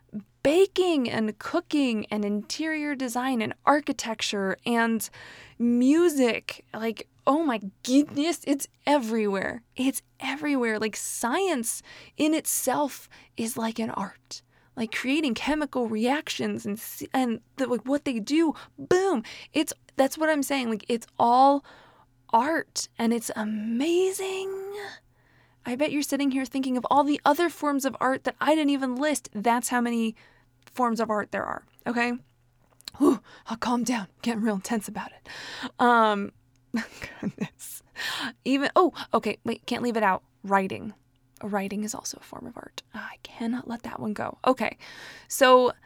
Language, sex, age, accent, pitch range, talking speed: English, female, 20-39, American, 215-285 Hz, 150 wpm